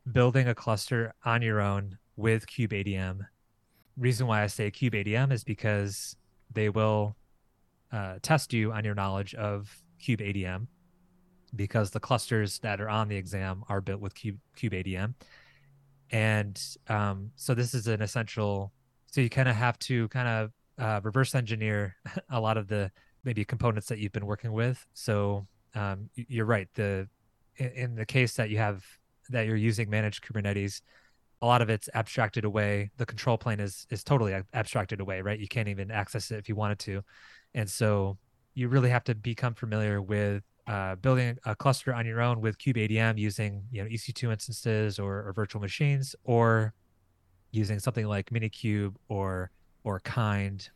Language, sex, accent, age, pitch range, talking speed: English, male, American, 20-39, 100-120 Hz, 175 wpm